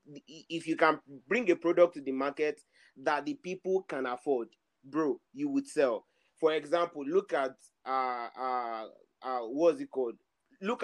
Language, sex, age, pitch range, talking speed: English, male, 30-49, 145-200 Hz, 160 wpm